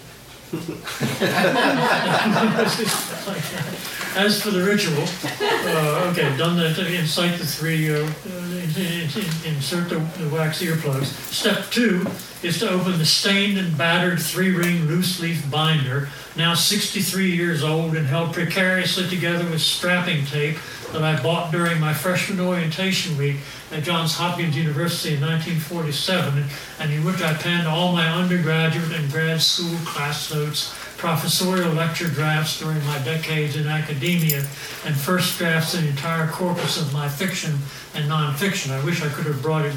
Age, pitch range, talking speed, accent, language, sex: 60-79, 150-175 Hz, 145 wpm, American, English, male